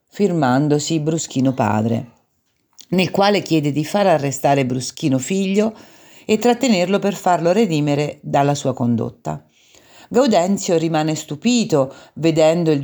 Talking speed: 110 wpm